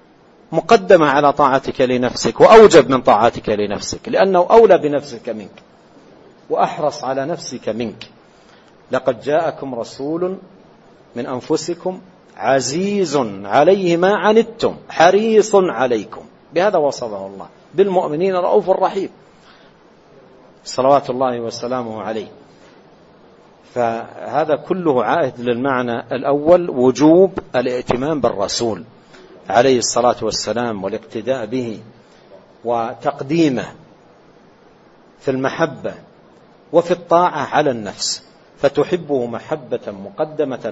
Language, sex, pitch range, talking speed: Arabic, male, 125-175 Hz, 90 wpm